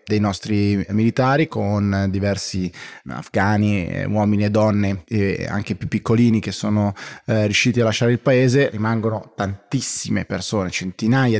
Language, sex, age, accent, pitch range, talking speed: Italian, male, 20-39, native, 100-120 Hz, 130 wpm